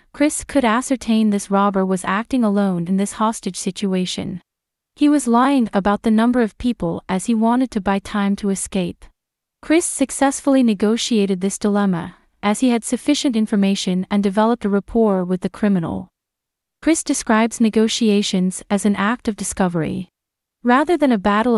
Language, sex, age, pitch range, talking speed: English, female, 30-49, 195-245 Hz, 160 wpm